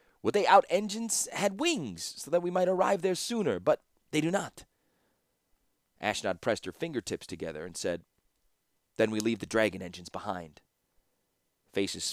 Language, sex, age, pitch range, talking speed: English, male, 30-49, 95-155 Hz, 155 wpm